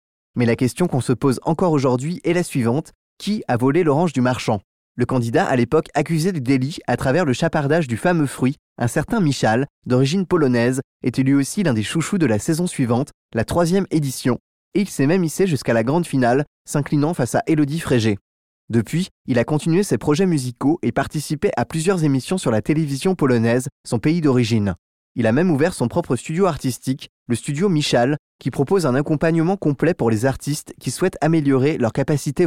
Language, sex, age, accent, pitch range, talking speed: French, male, 20-39, French, 115-155 Hz, 195 wpm